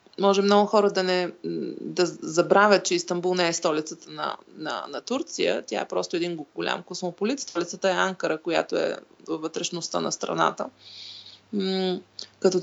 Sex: female